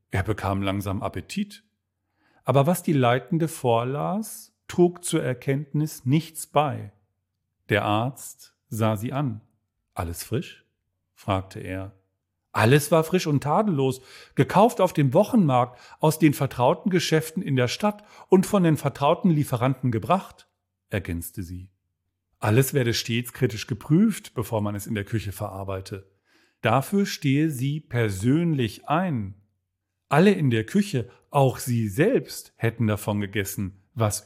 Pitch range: 105-150 Hz